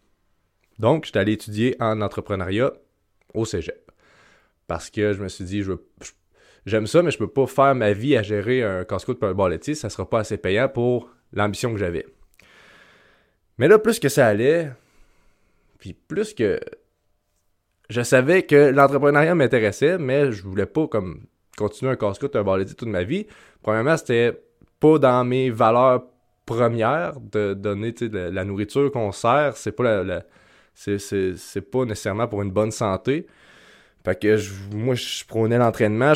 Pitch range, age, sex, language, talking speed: 100-140 Hz, 20-39, male, French, 175 wpm